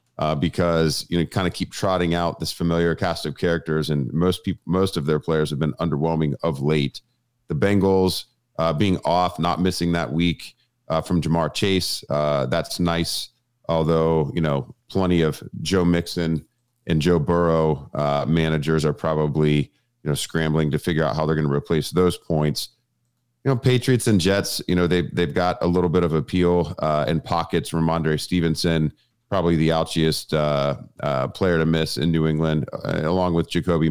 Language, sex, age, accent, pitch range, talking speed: English, male, 40-59, American, 80-90 Hz, 185 wpm